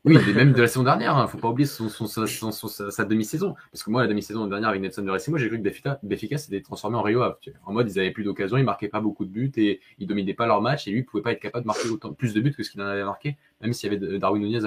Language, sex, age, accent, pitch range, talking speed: French, male, 20-39, French, 90-110 Hz, 340 wpm